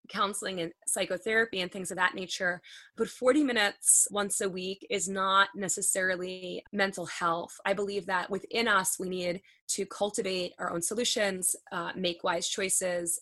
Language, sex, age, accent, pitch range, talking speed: English, female, 20-39, American, 180-215 Hz, 160 wpm